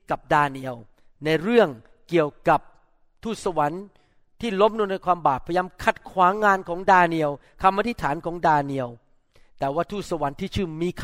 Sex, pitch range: male, 160-215 Hz